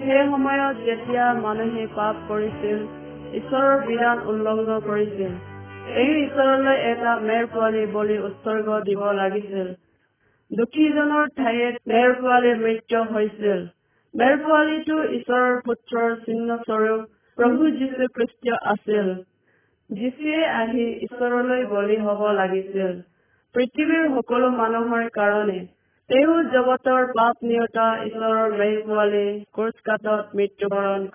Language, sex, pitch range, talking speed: Hindi, female, 195-245 Hz, 65 wpm